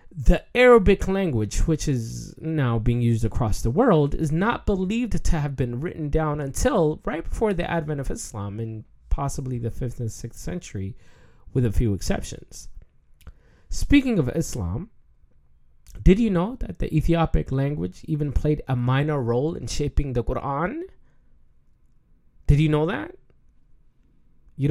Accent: American